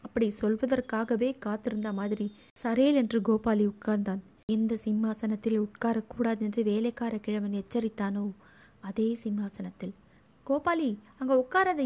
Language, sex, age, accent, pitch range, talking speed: Tamil, female, 20-39, native, 210-240 Hz, 90 wpm